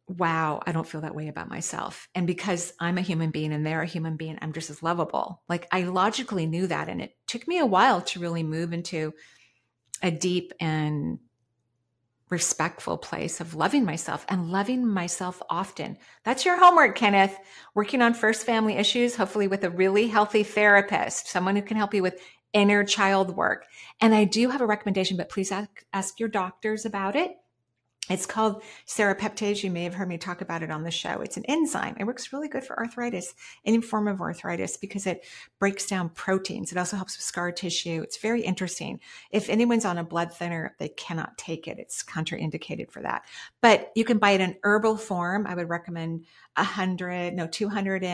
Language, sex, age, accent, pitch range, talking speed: English, female, 40-59, American, 170-210 Hz, 195 wpm